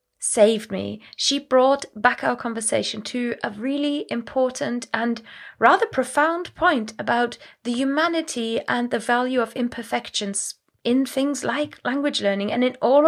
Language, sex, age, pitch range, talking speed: English, female, 20-39, 210-260 Hz, 140 wpm